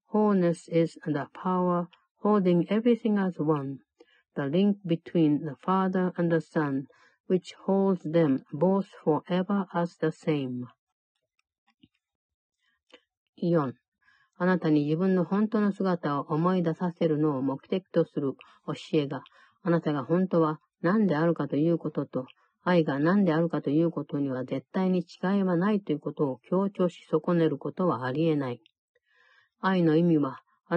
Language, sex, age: Japanese, female, 50-69